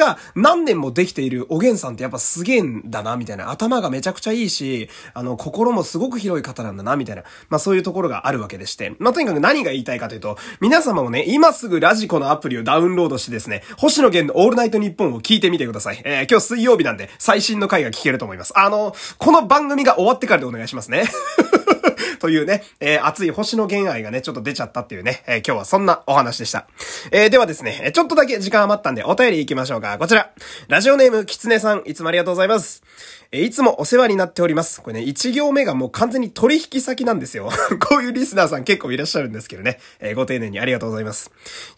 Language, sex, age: Japanese, male, 20-39